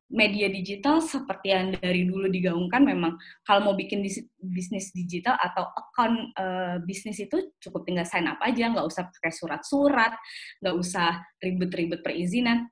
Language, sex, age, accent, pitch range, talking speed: Indonesian, female, 20-39, native, 180-265 Hz, 145 wpm